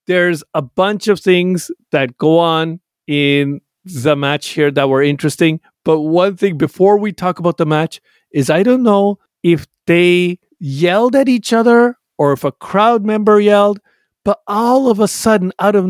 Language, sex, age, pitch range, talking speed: English, male, 40-59, 150-205 Hz, 175 wpm